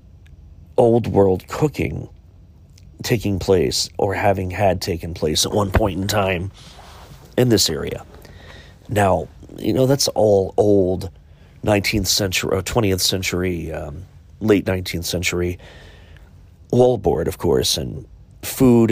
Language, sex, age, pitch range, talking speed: English, male, 40-59, 85-100 Hz, 115 wpm